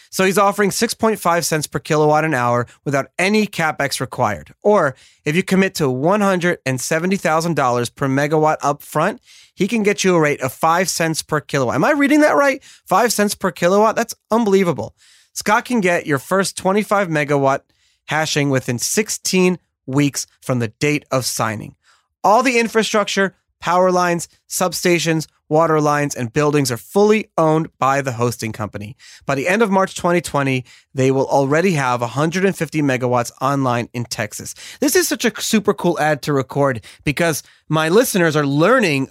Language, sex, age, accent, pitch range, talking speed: English, male, 30-49, American, 135-195 Hz, 165 wpm